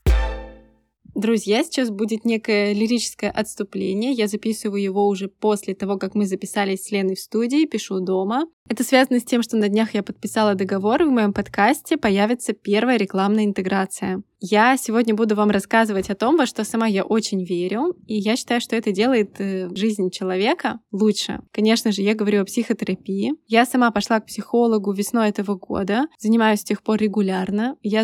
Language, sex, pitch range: Russian, female, 195-230 Hz